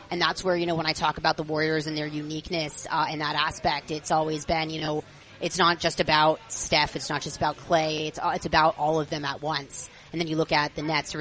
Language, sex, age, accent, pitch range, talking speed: English, female, 30-49, American, 155-175 Hz, 270 wpm